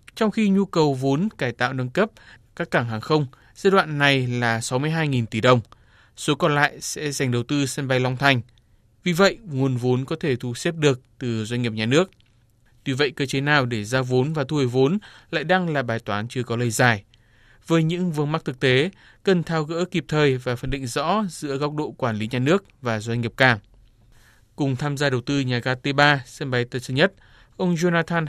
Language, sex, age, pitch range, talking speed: Vietnamese, male, 20-39, 120-155 Hz, 225 wpm